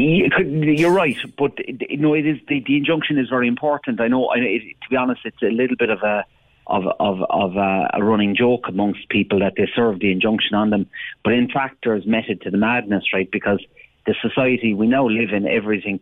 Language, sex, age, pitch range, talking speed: English, male, 40-59, 100-140 Hz, 210 wpm